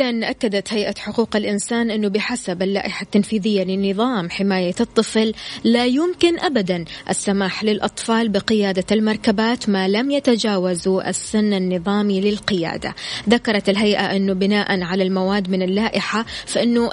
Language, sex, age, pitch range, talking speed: Arabic, female, 20-39, 190-230 Hz, 120 wpm